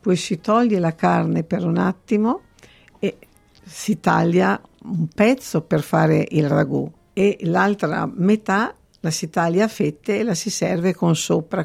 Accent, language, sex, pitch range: native, Italian, female, 165-200 Hz